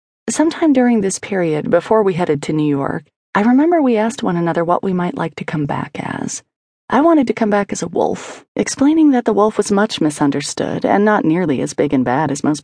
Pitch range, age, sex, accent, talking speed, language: 150-215 Hz, 30-49, female, American, 230 wpm, English